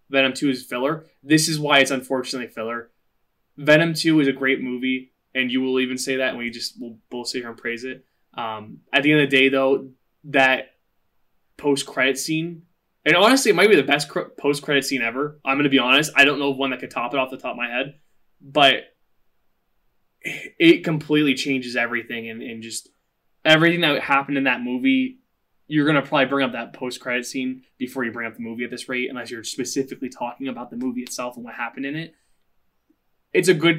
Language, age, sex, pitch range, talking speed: English, 20-39, male, 125-145 Hz, 220 wpm